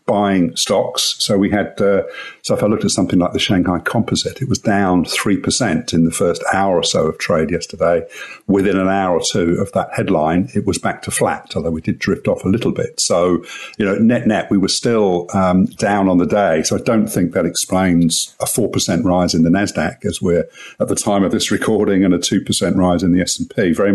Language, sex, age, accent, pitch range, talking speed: English, male, 50-69, British, 85-95 Hz, 245 wpm